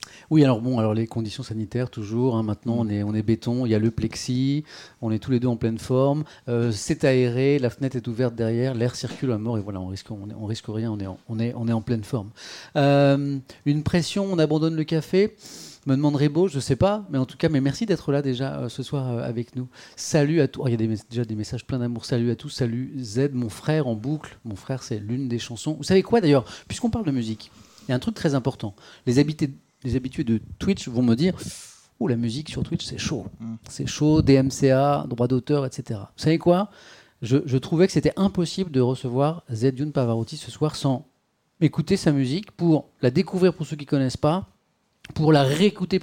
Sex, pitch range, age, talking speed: male, 120-155 Hz, 30-49, 240 wpm